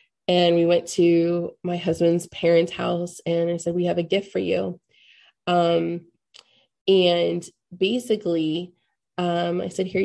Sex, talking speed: female, 145 wpm